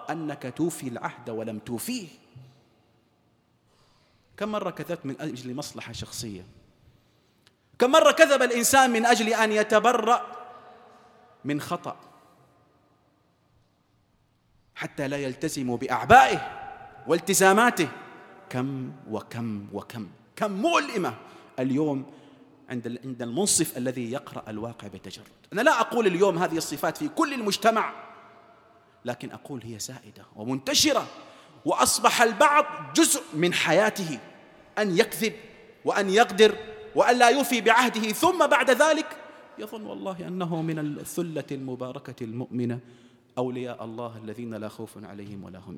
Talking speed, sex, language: 110 wpm, male, Arabic